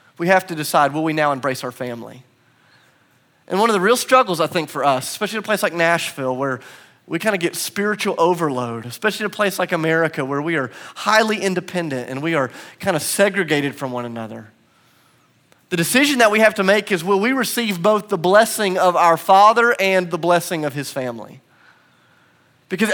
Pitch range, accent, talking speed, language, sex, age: 130-180 Hz, American, 200 wpm, English, male, 30-49